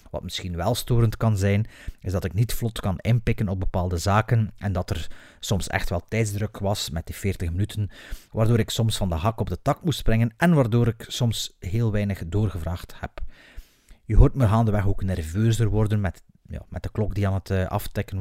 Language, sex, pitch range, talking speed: Dutch, male, 90-110 Hz, 210 wpm